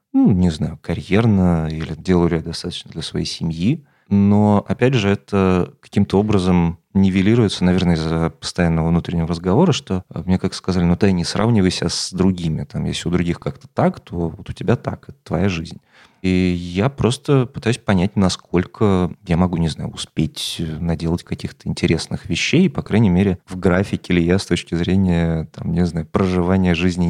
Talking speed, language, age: 175 wpm, Russian, 30-49